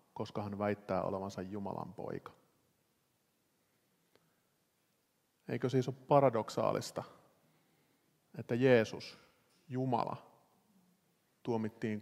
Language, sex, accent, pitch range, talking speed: Finnish, male, native, 105-120 Hz, 70 wpm